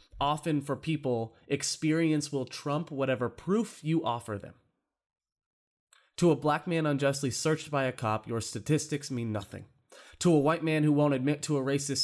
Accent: American